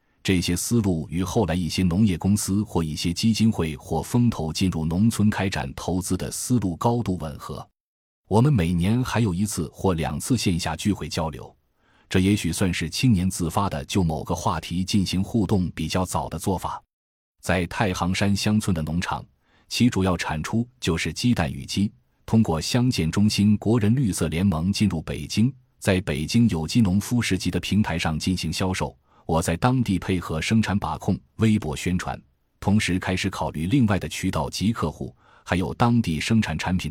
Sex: male